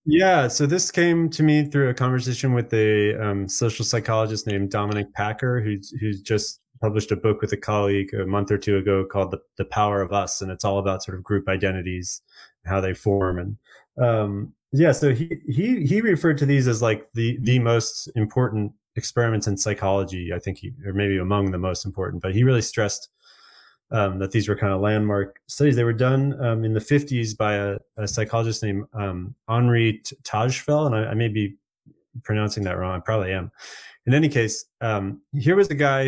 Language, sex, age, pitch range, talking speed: English, male, 30-49, 100-125 Hz, 205 wpm